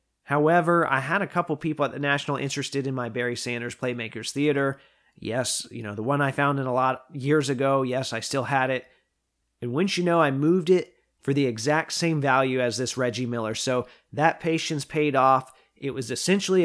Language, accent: English, American